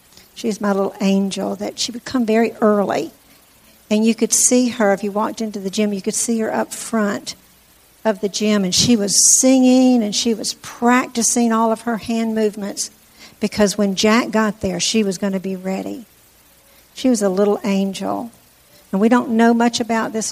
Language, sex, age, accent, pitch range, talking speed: English, female, 60-79, American, 195-225 Hz, 195 wpm